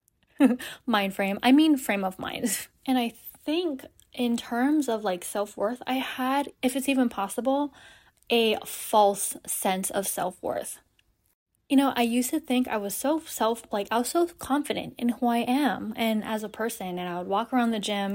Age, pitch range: 20-39, 195-255 Hz